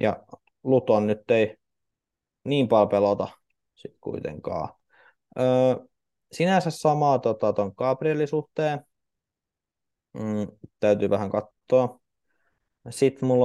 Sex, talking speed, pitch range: male, 95 wpm, 105-125 Hz